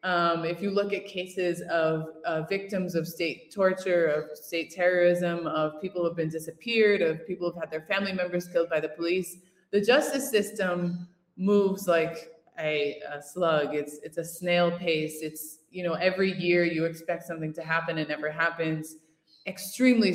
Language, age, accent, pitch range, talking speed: English, 20-39, American, 165-200 Hz, 180 wpm